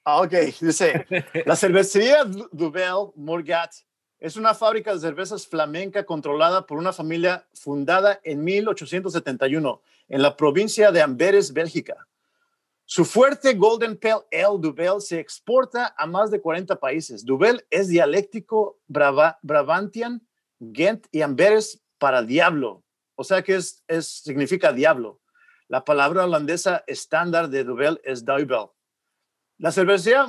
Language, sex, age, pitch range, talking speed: English, male, 50-69, 160-215 Hz, 125 wpm